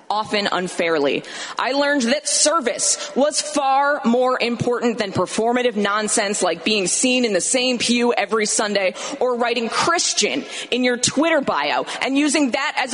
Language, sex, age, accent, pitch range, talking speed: English, female, 20-39, American, 220-260 Hz, 155 wpm